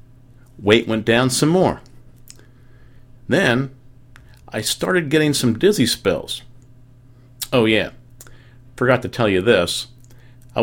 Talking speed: 115 wpm